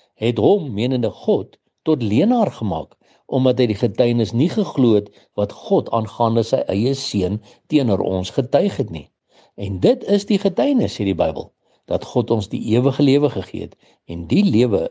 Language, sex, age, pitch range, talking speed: English, male, 60-79, 105-140 Hz, 170 wpm